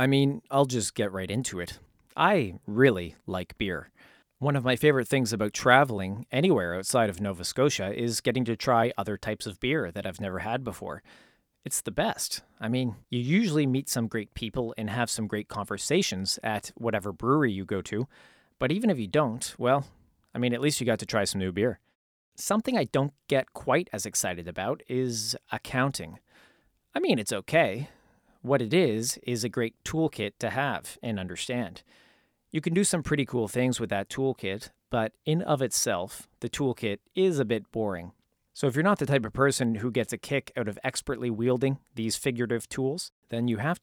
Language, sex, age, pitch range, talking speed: English, male, 30-49, 105-135 Hz, 195 wpm